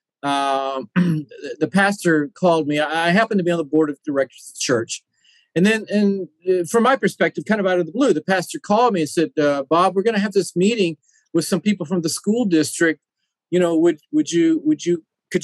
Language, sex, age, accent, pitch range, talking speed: English, male, 40-59, American, 155-205 Hz, 225 wpm